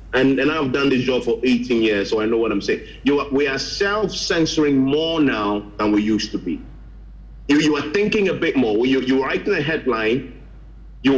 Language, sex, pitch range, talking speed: English, male, 120-160 Hz, 215 wpm